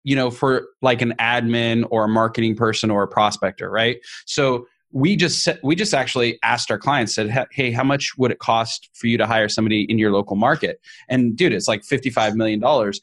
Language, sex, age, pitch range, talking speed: English, male, 20-39, 115-150 Hz, 205 wpm